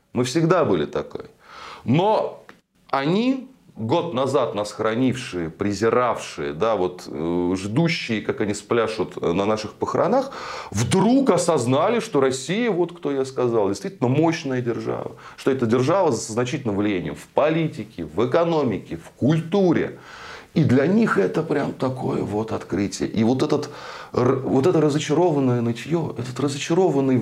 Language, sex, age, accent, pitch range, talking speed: Russian, male, 30-49, native, 110-175 Hz, 125 wpm